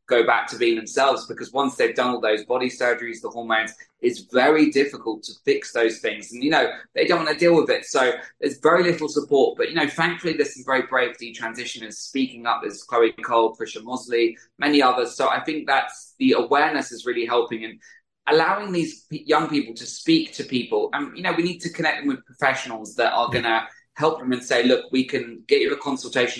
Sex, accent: male, British